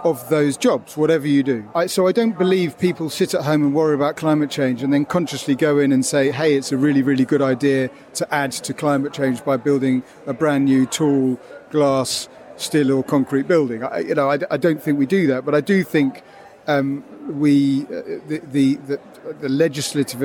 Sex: male